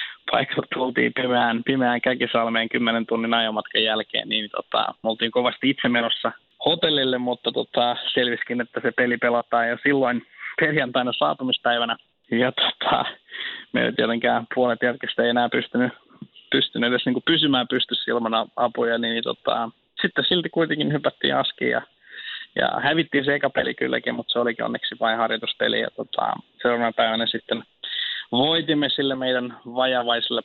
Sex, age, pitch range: male, 20-39, 115-130 Hz